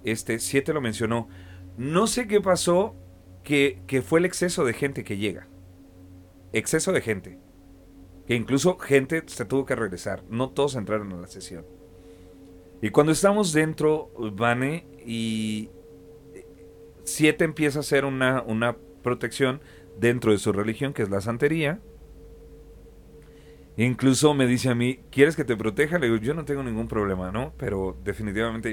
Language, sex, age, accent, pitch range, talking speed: Spanish, male, 40-59, Mexican, 95-145 Hz, 155 wpm